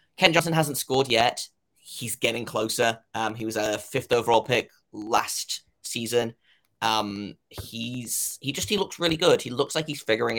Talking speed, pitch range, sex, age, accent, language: 175 wpm, 110-140 Hz, male, 20-39, British, English